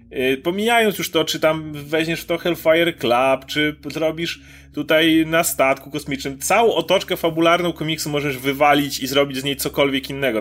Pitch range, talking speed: 135-160 Hz, 160 wpm